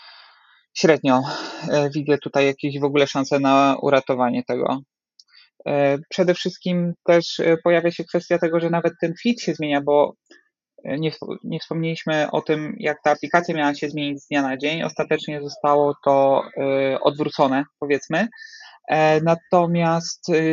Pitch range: 145-165 Hz